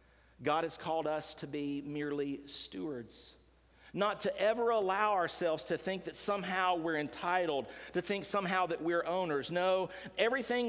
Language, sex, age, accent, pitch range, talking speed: English, male, 40-59, American, 145-205 Hz, 150 wpm